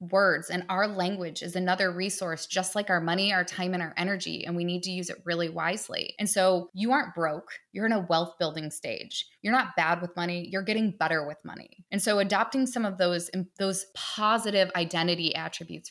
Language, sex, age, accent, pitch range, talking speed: English, female, 20-39, American, 170-200 Hz, 210 wpm